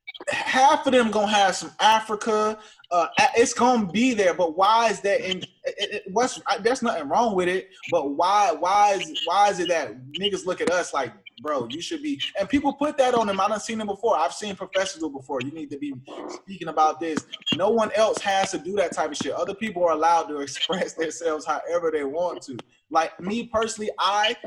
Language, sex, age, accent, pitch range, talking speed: English, male, 20-39, American, 155-220 Hz, 215 wpm